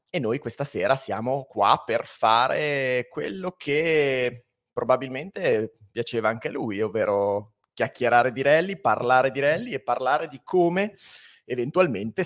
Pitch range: 110-140 Hz